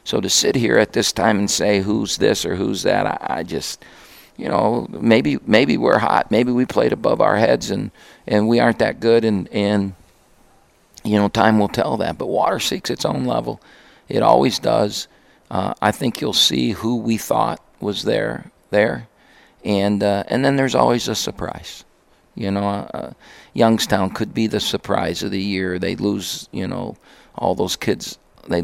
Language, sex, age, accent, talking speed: English, male, 50-69, American, 190 wpm